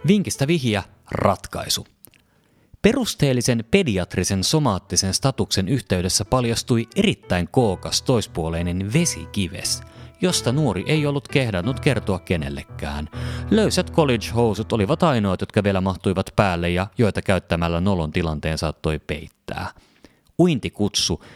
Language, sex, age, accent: Finnish, male, 30-49, native